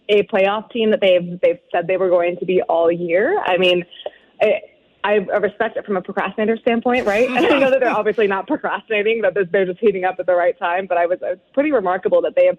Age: 20-39